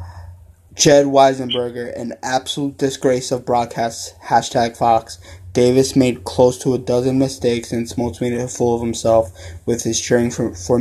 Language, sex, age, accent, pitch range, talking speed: English, male, 20-39, American, 115-125 Hz, 155 wpm